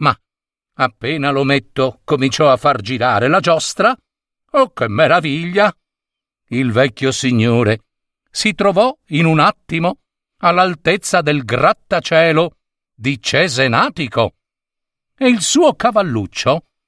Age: 50-69